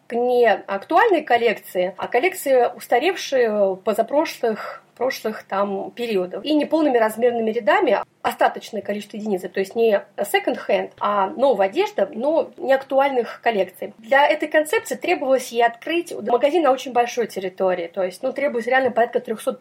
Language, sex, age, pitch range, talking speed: Russian, female, 30-49, 215-280 Hz, 140 wpm